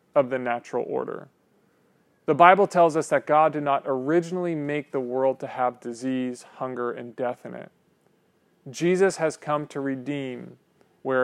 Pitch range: 125-155 Hz